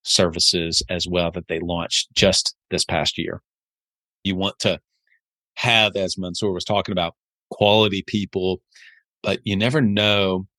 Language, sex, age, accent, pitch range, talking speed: English, male, 40-59, American, 90-105 Hz, 140 wpm